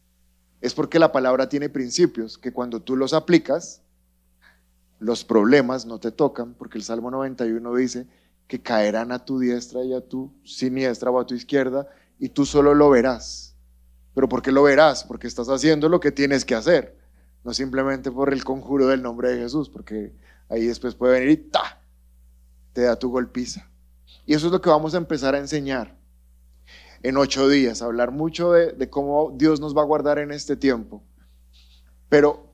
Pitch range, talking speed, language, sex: 110-150 Hz, 185 wpm, Spanish, male